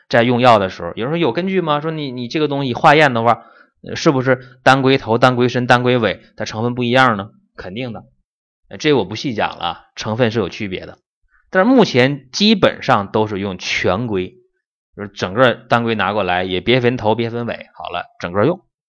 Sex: male